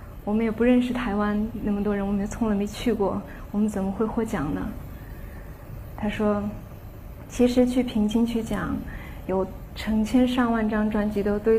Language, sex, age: Chinese, female, 20-39